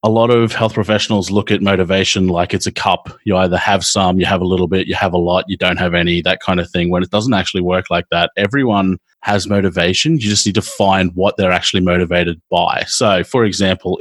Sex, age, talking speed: male, 30-49, 240 wpm